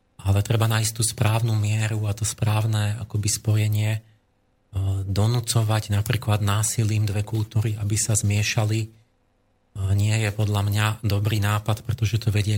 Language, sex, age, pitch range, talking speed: Slovak, male, 40-59, 100-110 Hz, 140 wpm